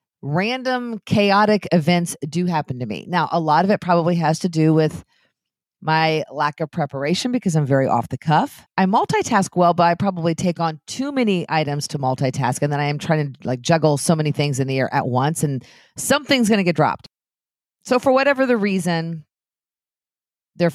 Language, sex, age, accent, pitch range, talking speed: English, female, 40-59, American, 145-195 Hz, 195 wpm